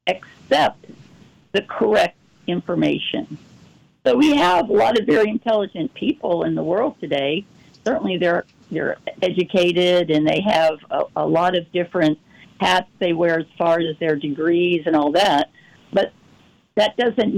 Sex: female